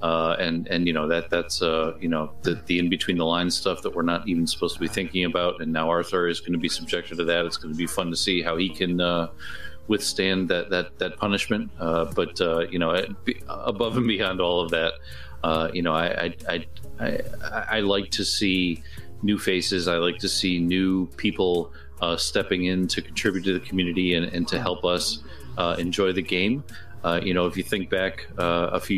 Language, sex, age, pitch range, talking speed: English, male, 40-59, 80-95 Hz, 225 wpm